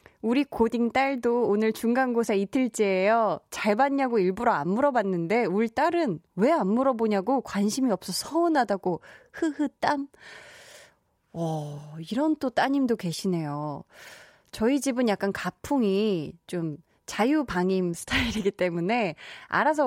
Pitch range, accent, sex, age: 185-265 Hz, native, female, 20-39